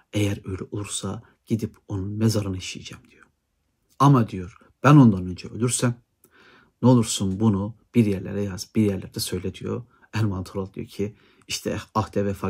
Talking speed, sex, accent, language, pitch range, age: 155 wpm, male, native, Turkish, 95-115 Hz, 60-79